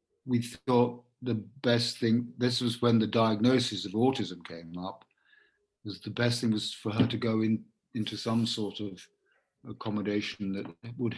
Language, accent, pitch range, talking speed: English, British, 95-120 Hz, 165 wpm